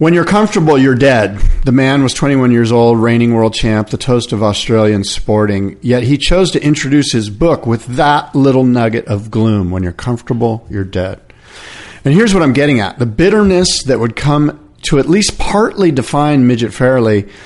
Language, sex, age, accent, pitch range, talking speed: English, male, 50-69, American, 115-145 Hz, 190 wpm